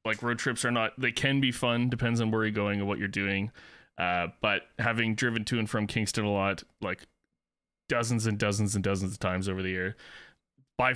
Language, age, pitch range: English, 20-39, 100-120 Hz